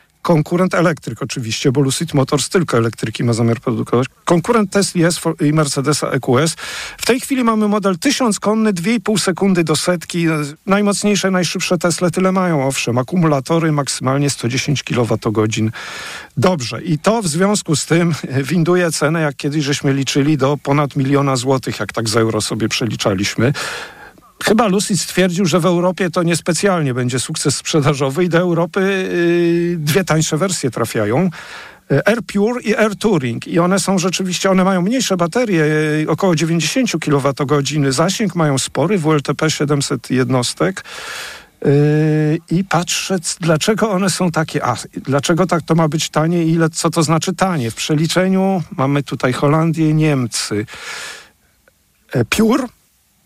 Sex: male